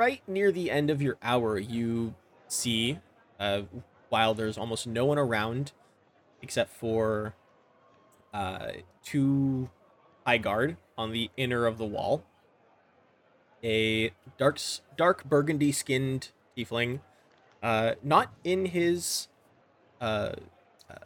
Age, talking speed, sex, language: 20-39, 110 wpm, male, English